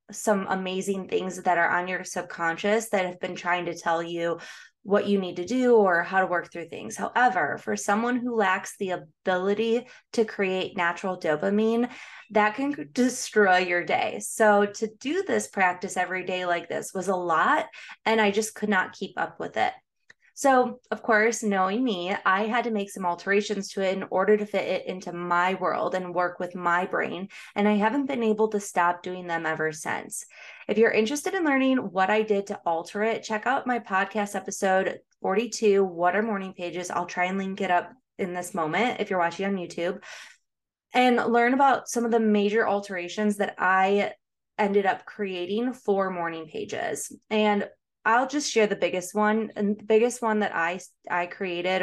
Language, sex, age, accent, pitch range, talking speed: English, female, 20-39, American, 180-220 Hz, 190 wpm